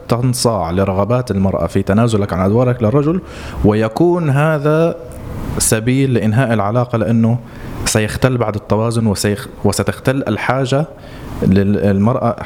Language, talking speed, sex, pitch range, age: Arabic, 90 wpm, male, 100-125 Hz, 20-39